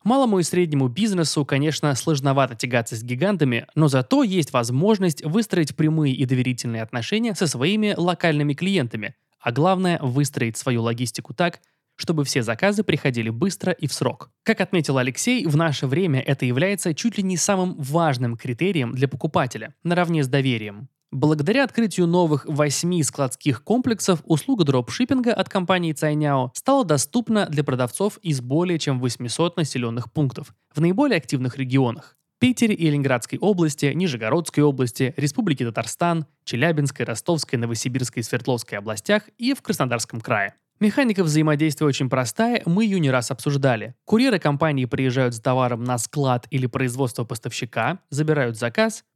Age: 20-39